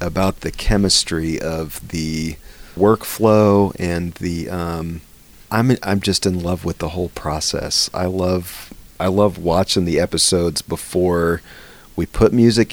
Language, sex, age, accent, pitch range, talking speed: English, male, 40-59, American, 80-95 Hz, 135 wpm